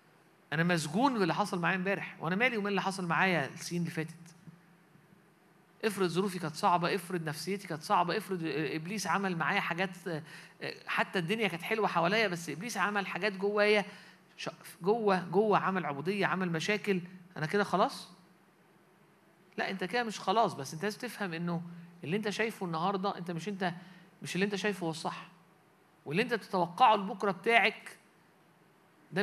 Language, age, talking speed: Arabic, 50-69, 155 wpm